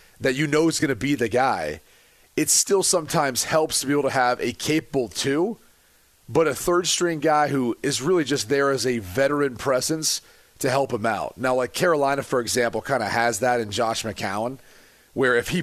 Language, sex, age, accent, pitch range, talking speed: English, male, 30-49, American, 120-145 Hz, 205 wpm